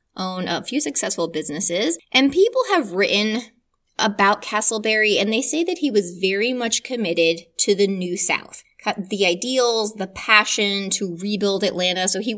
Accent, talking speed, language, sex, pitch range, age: American, 160 wpm, English, female, 185-240 Hz, 20-39